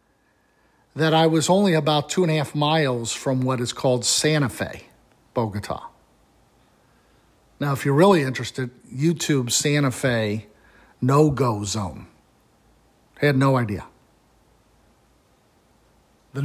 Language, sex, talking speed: English, male, 115 wpm